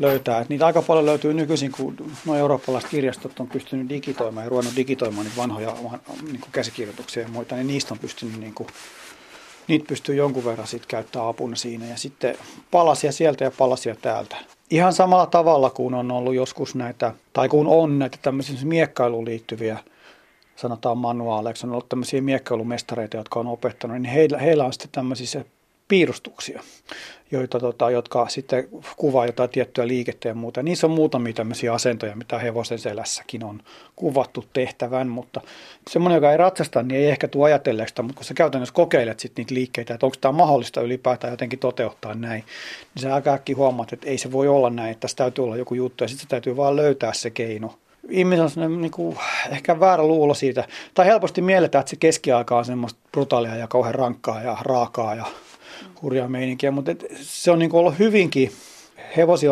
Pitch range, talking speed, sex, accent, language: 120-145 Hz, 180 wpm, male, native, Finnish